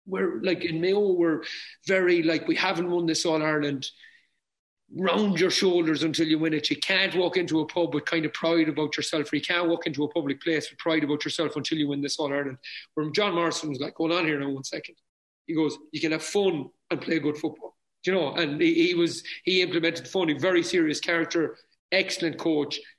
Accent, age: Irish, 30-49